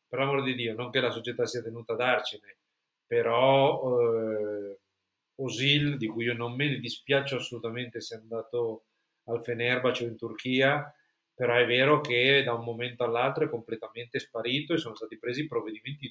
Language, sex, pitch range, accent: Italian, male, 120-140 Hz, native